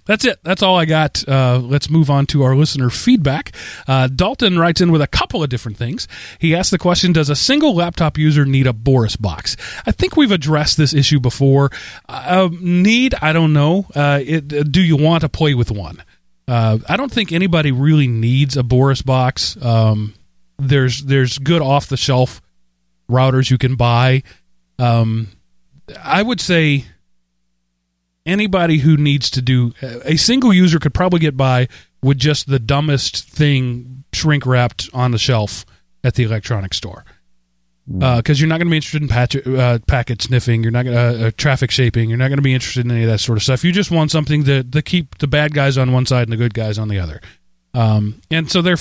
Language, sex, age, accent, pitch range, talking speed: English, male, 30-49, American, 115-155 Hz, 200 wpm